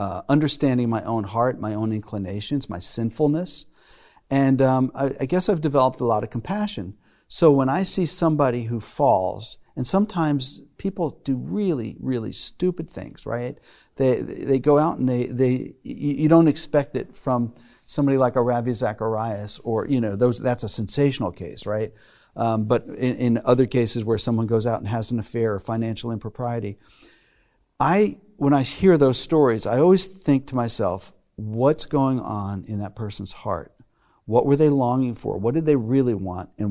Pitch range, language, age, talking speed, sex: 115-145 Hz, English, 50-69, 180 wpm, male